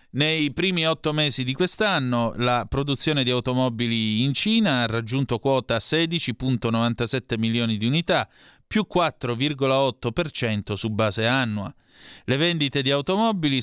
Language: Italian